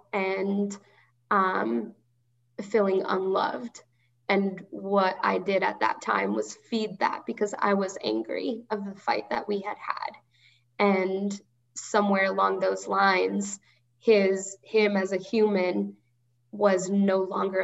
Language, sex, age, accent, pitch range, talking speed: English, female, 10-29, American, 125-200 Hz, 130 wpm